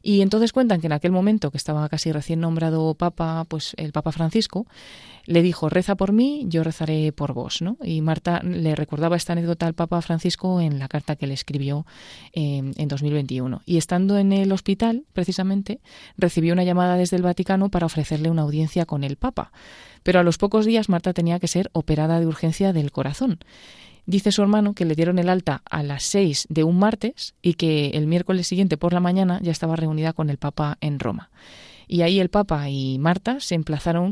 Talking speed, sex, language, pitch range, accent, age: 205 wpm, female, Spanish, 155-185 Hz, Spanish, 20-39